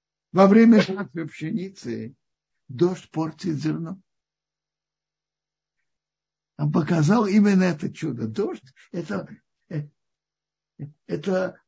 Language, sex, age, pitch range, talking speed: Russian, male, 60-79, 125-200 Hz, 75 wpm